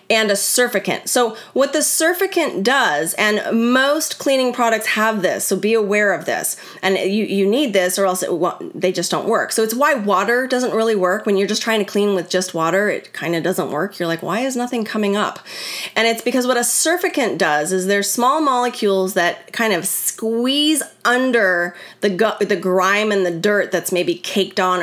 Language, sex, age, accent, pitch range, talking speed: English, female, 30-49, American, 185-230 Hz, 210 wpm